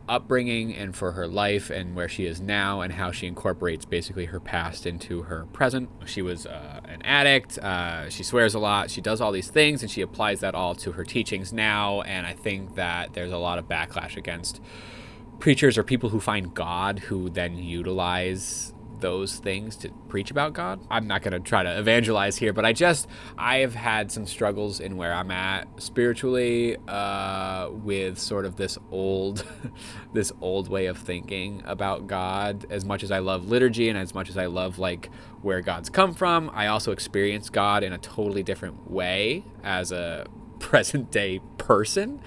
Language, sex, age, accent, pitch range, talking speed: English, male, 20-39, American, 90-115 Hz, 190 wpm